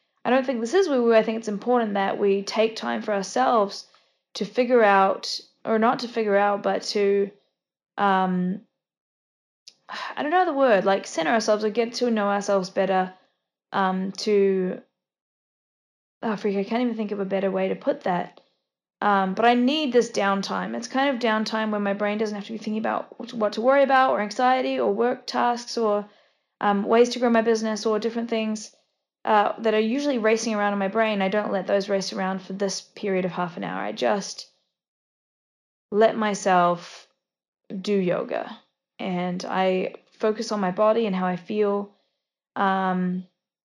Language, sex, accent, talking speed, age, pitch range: English, female, Australian, 180 wpm, 10-29, 195-230 Hz